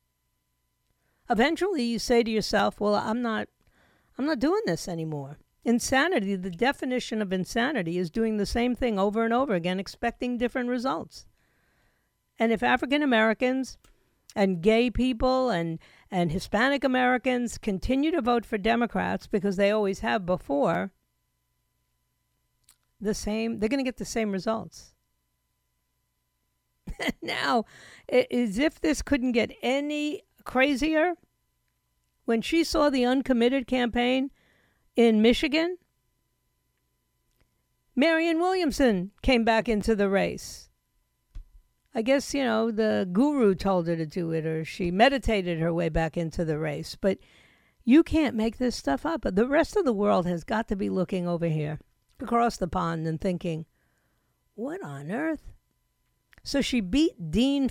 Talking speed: 135 wpm